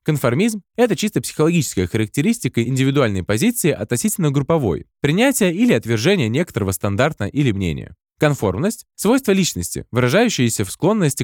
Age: 20-39